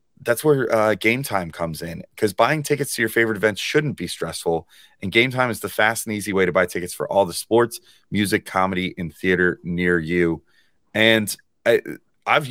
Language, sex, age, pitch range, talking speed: English, male, 30-49, 90-115 Hz, 200 wpm